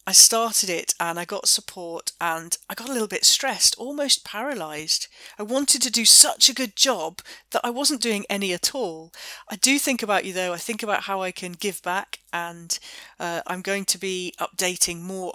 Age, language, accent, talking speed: 40-59, English, British, 205 wpm